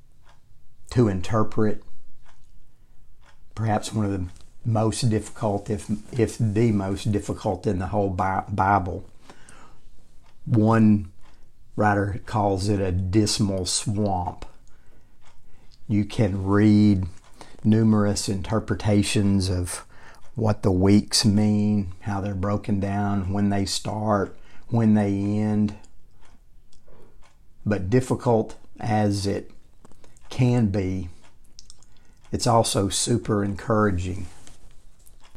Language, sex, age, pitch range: English, male, 50-69, 100-110 Hz